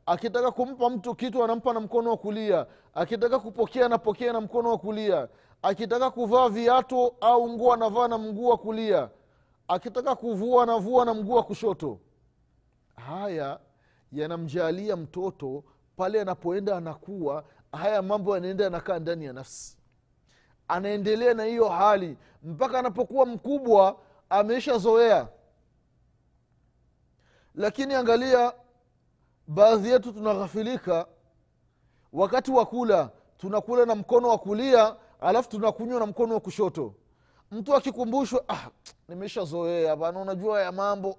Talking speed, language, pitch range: 120 wpm, Swahili, 195-245 Hz